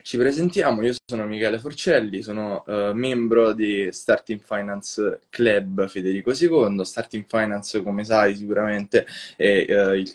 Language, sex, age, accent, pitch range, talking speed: Italian, male, 10-29, native, 100-120 Hz, 125 wpm